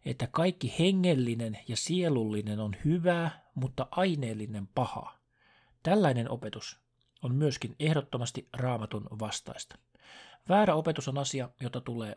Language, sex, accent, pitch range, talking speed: Finnish, male, native, 120-160 Hz, 115 wpm